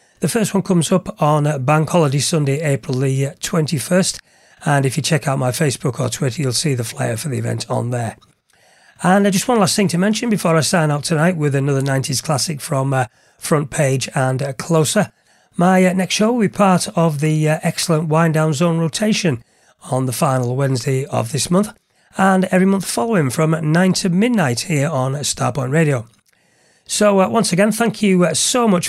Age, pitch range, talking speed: 40-59, 135-185 Hz, 195 wpm